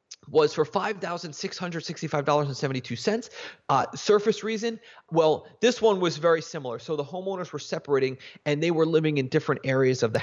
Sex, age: male, 30-49